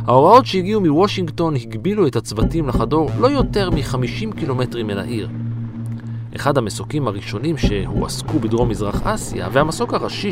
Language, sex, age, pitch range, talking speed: Hebrew, male, 40-59, 110-150 Hz, 130 wpm